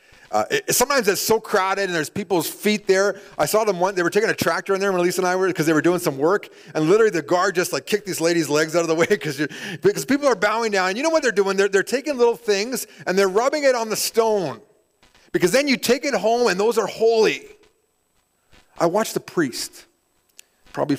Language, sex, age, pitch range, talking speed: English, male, 40-59, 145-200 Hz, 245 wpm